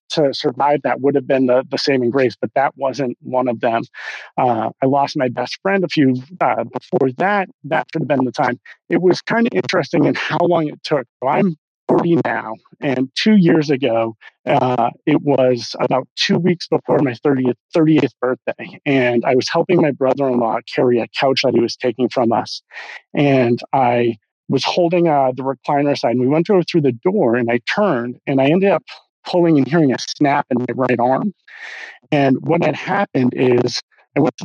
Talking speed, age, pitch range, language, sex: 200 wpm, 30-49, 125-160 Hz, English, male